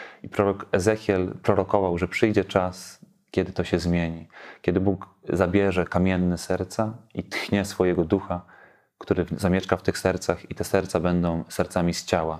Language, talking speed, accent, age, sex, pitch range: Polish, 155 wpm, native, 30-49, male, 85-95 Hz